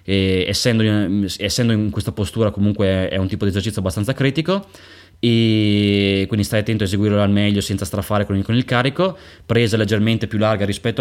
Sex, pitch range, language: male, 95-110 Hz, Italian